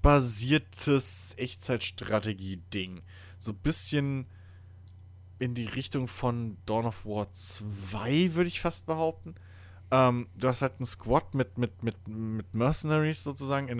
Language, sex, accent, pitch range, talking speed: German, male, German, 95-120 Hz, 130 wpm